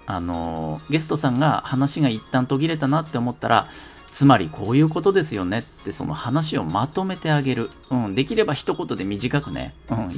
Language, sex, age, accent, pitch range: Japanese, male, 40-59, native, 105-155 Hz